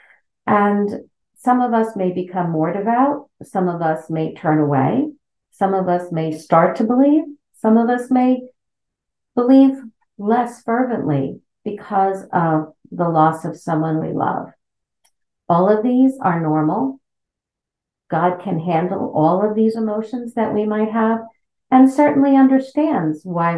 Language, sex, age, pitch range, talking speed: English, female, 50-69, 170-245 Hz, 145 wpm